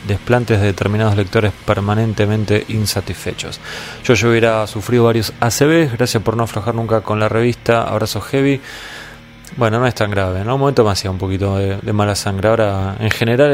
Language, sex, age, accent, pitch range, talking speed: Spanish, male, 20-39, Argentinian, 100-115 Hz, 185 wpm